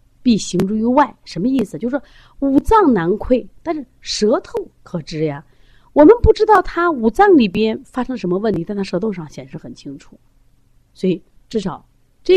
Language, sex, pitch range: Chinese, female, 155-240 Hz